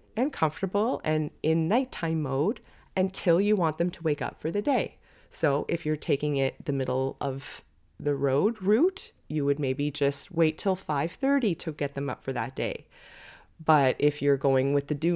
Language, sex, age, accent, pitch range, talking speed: English, female, 20-39, American, 140-175 Hz, 195 wpm